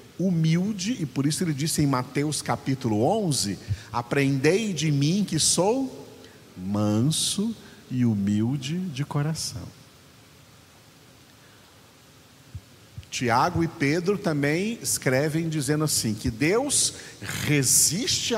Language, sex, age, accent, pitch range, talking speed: Portuguese, male, 50-69, Brazilian, 110-155 Hz, 100 wpm